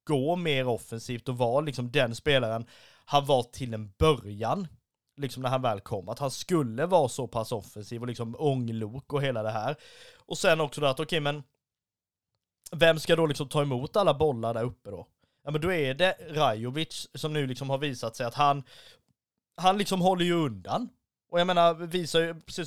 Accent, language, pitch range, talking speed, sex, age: native, Swedish, 125-170 Hz, 200 wpm, male, 20-39